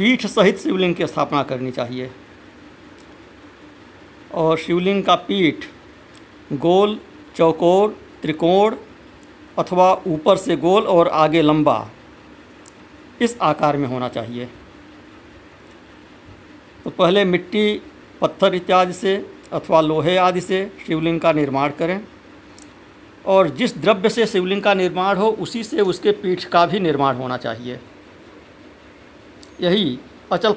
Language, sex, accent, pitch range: Hindi, male, native, 130-200 Hz